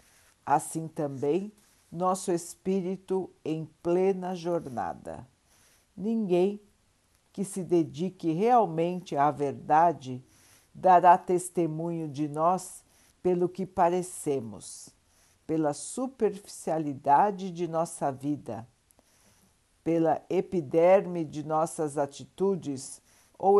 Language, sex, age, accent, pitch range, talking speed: Portuguese, female, 60-79, Brazilian, 140-185 Hz, 80 wpm